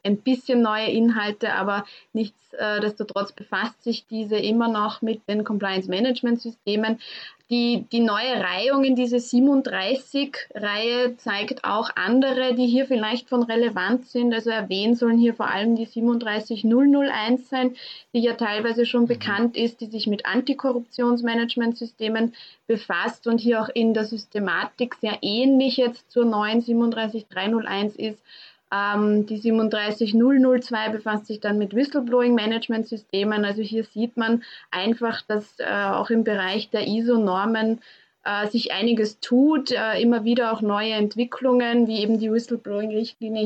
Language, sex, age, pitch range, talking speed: German, female, 20-39, 210-240 Hz, 135 wpm